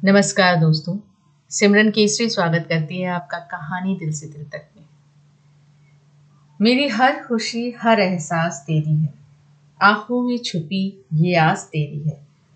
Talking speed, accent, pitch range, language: 135 wpm, native, 155-215 Hz, Hindi